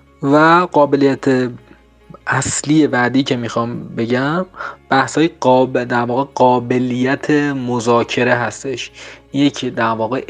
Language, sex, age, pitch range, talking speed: Persian, male, 30-49, 120-145 Hz, 95 wpm